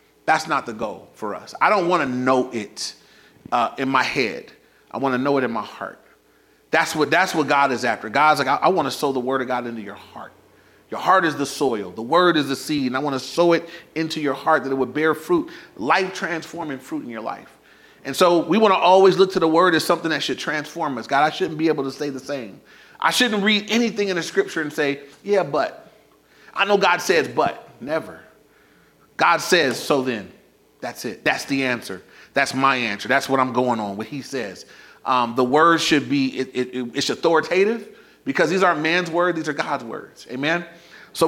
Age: 30-49